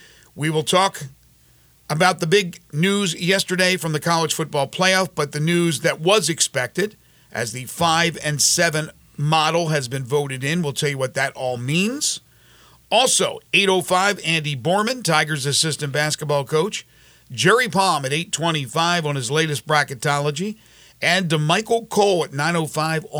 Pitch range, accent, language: 145-175 Hz, American, English